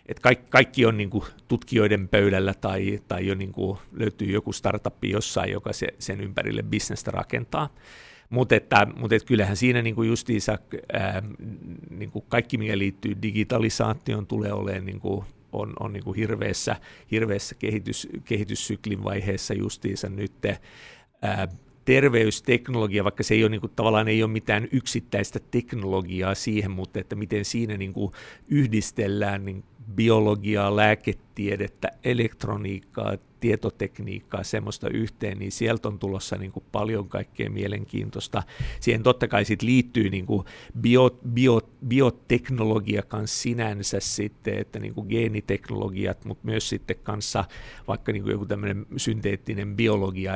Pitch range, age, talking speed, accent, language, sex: 100-115 Hz, 50-69, 125 wpm, native, Finnish, male